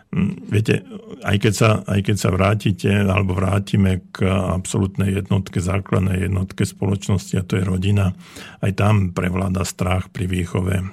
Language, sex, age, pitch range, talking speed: Slovak, male, 50-69, 95-100 Hz, 145 wpm